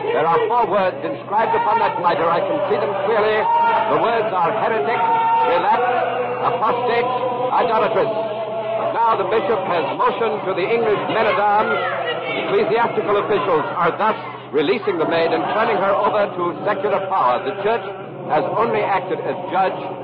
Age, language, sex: 60-79, English, male